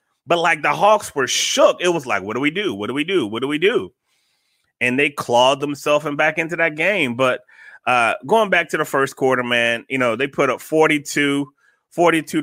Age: 30-49